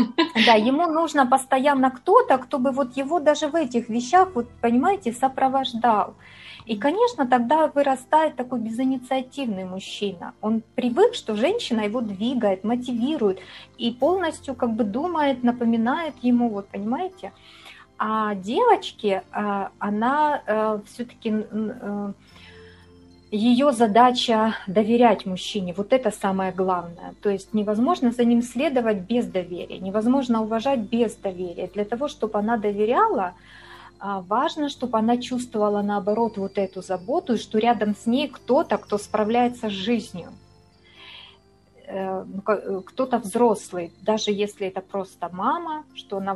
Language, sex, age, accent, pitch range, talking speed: Ukrainian, female, 30-49, native, 200-260 Hz, 125 wpm